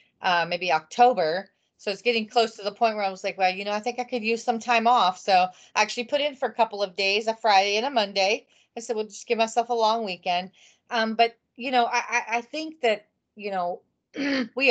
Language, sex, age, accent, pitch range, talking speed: English, female, 30-49, American, 170-220 Hz, 245 wpm